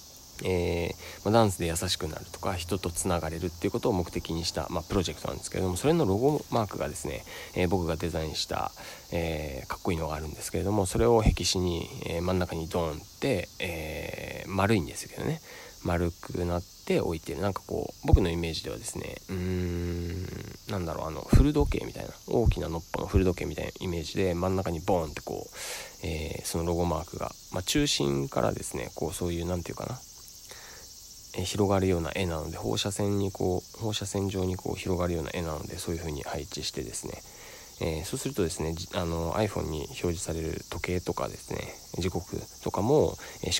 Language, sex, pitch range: Japanese, male, 85-95 Hz